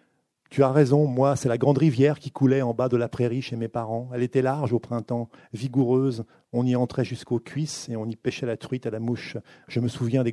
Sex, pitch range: male, 115-140 Hz